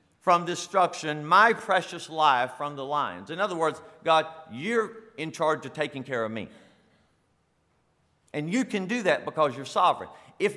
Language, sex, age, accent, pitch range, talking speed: English, male, 50-69, American, 140-190 Hz, 165 wpm